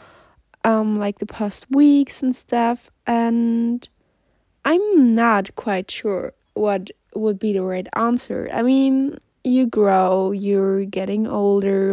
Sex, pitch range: female, 205-255 Hz